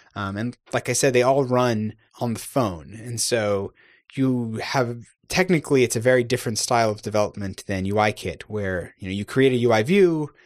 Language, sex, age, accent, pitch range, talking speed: English, male, 30-49, American, 110-130 Hz, 195 wpm